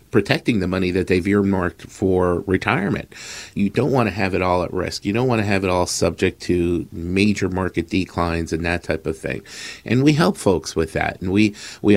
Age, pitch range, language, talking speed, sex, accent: 50-69, 90-115 Hz, English, 205 wpm, male, American